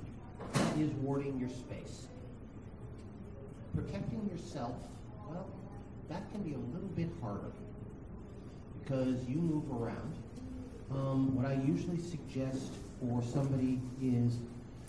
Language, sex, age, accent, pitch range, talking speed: English, male, 40-59, American, 115-130 Hz, 105 wpm